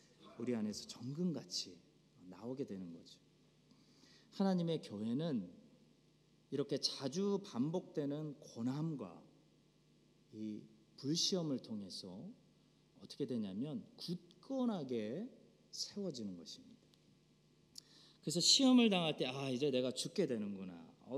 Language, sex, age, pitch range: Korean, male, 40-59, 130-210 Hz